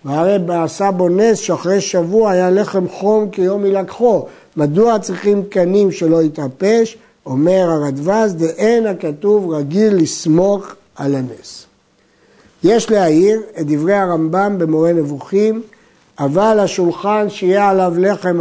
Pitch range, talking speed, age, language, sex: 165-210 Hz, 120 wpm, 60-79, Hebrew, male